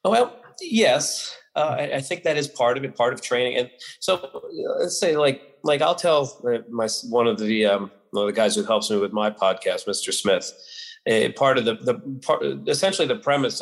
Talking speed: 225 wpm